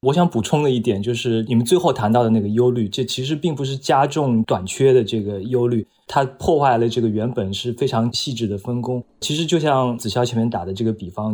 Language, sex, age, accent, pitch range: Chinese, male, 20-39, native, 110-145 Hz